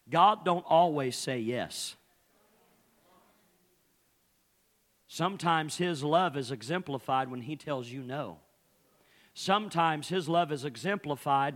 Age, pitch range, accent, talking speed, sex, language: 50-69, 135-170 Hz, American, 105 wpm, male, English